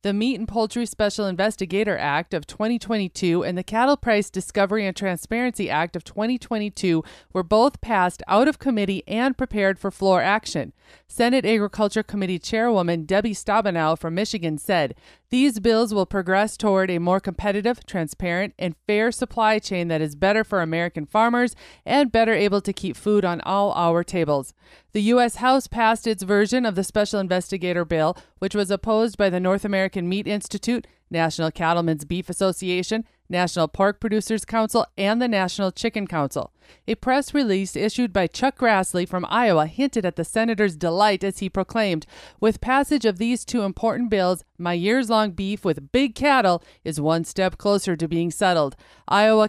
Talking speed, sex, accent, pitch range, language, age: 170 wpm, female, American, 180-220 Hz, English, 30-49